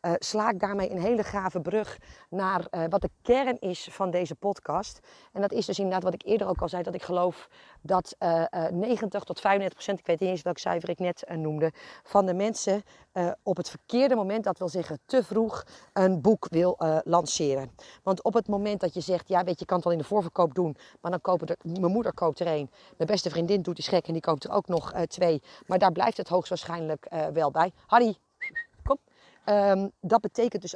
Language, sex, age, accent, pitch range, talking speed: Dutch, female, 40-59, Dutch, 175-220 Hz, 230 wpm